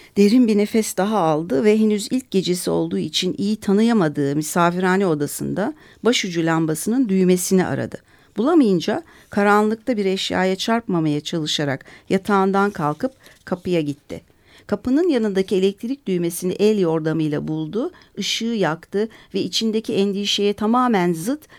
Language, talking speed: Turkish, 120 wpm